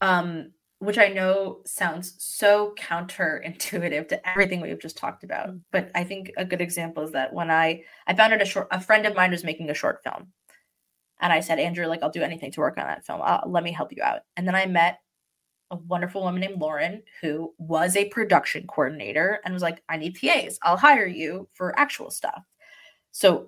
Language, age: English, 20-39